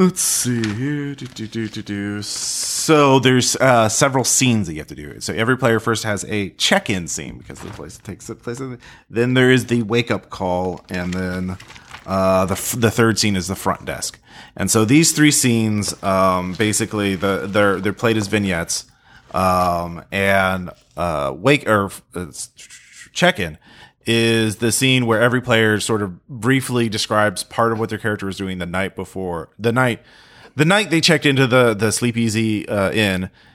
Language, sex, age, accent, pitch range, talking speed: English, male, 30-49, American, 95-120 Hz, 170 wpm